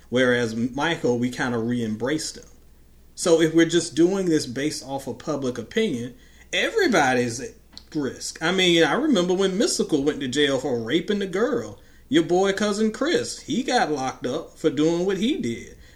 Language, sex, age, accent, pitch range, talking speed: English, male, 30-49, American, 120-190 Hz, 175 wpm